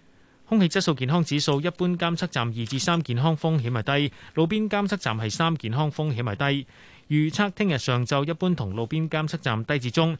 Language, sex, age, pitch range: Chinese, male, 30-49, 125-165 Hz